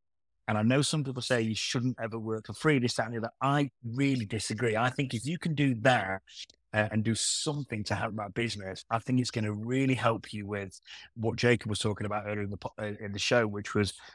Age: 30-49